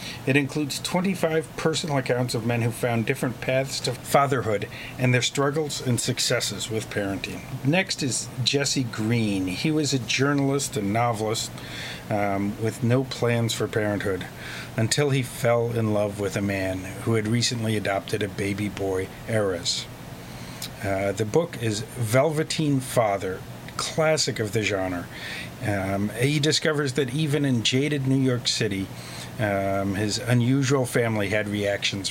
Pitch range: 100-135 Hz